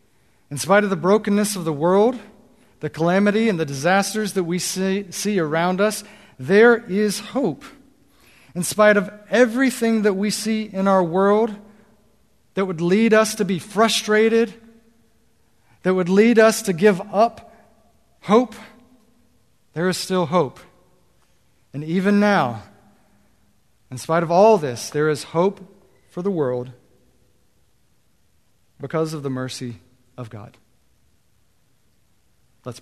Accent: American